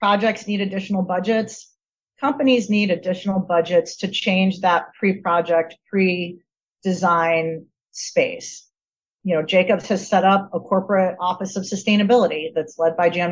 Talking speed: 140 wpm